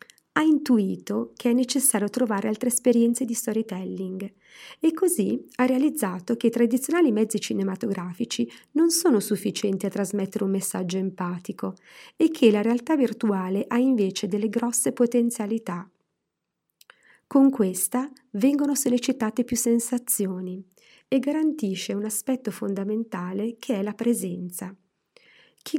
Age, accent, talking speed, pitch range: 40-59, native, 125 wpm, 200-255 Hz